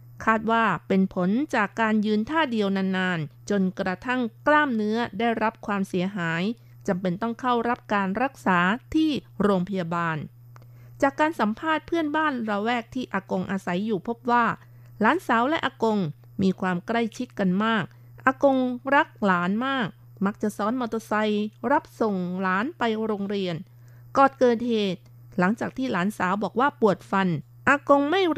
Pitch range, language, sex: 180-235 Hz, Thai, female